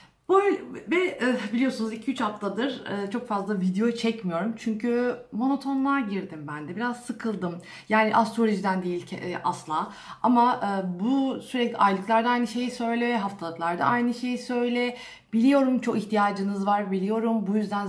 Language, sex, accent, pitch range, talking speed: Turkish, female, native, 190-240 Hz, 125 wpm